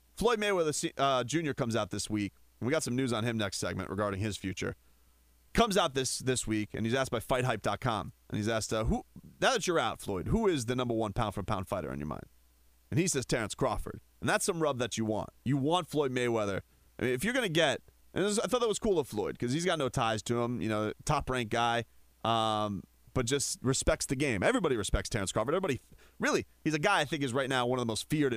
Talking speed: 250 wpm